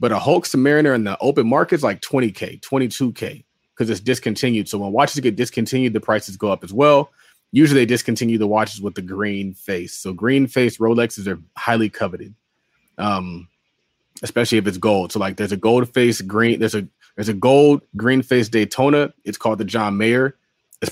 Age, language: 30-49, English